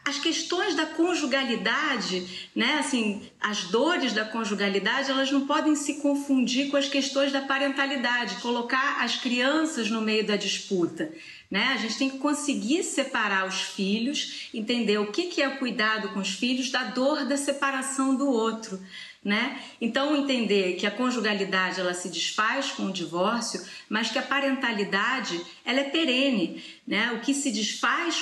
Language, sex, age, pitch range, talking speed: Portuguese, female, 40-59, 200-275 Hz, 160 wpm